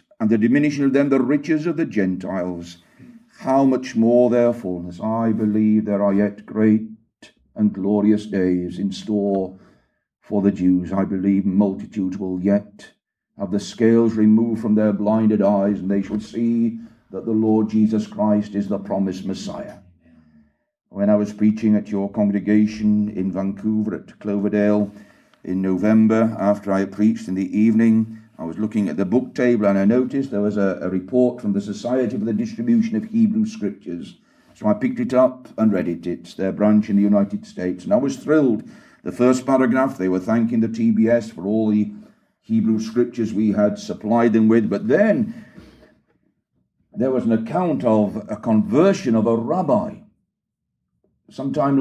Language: English